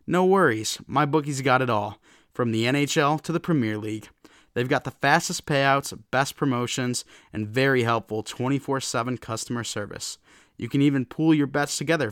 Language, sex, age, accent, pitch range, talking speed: English, male, 20-39, American, 115-140 Hz, 165 wpm